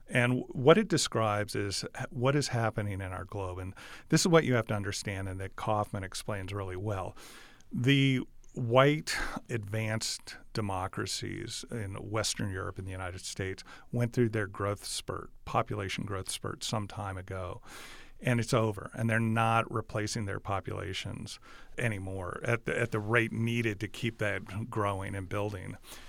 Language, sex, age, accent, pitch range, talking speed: English, male, 40-59, American, 100-120 Hz, 155 wpm